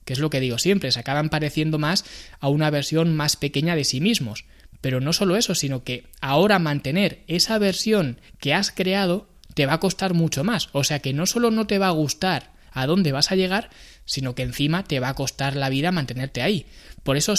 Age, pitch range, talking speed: 20-39, 130-180 Hz, 220 wpm